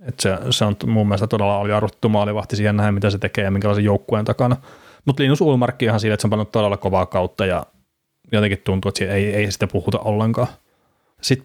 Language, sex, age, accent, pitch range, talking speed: Finnish, male, 30-49, native, 100-120 Hz, 225 wpm